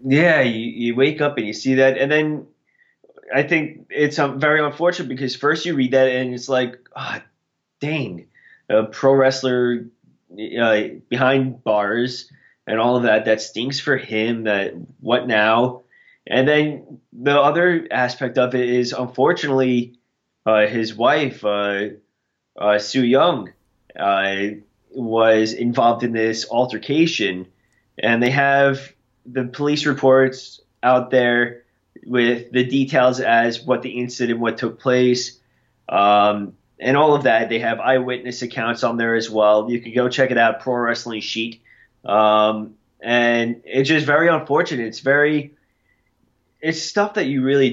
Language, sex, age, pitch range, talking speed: English, male, 20-39, 115-135 Hz, 150 wpm